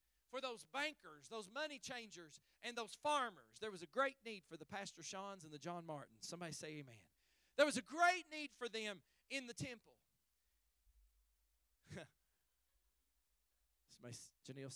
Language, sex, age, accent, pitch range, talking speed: English, male, 40-59, American, 160-240 Hz, 145 wpm